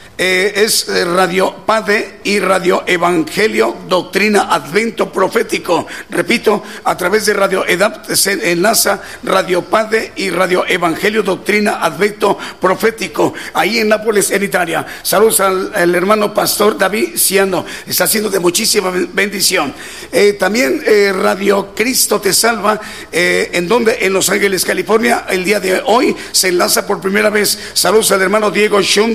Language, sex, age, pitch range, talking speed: Spanish, male, 50-69, 190-215 Hz, 145 wpm